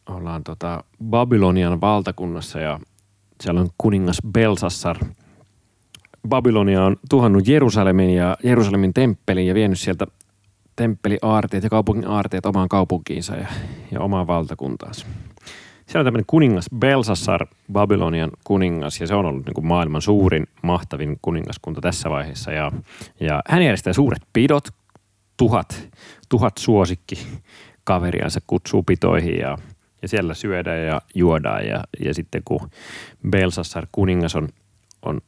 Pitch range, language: 90-110 Hz, Finnish